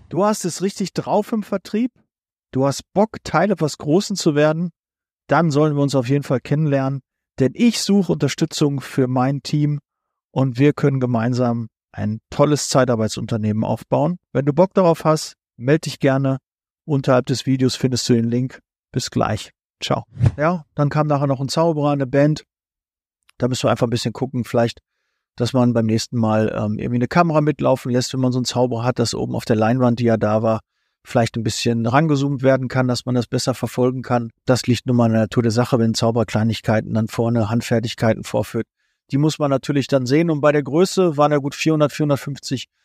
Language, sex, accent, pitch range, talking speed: German, male, German, 120-145 Hz, 195 wpm